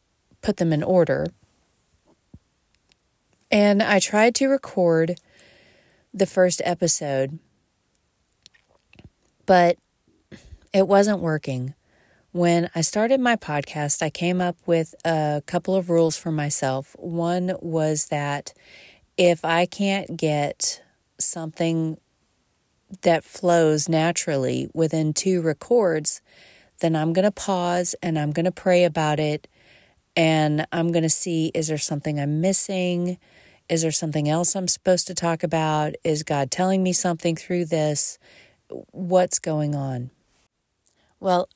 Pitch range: 150-185 Hz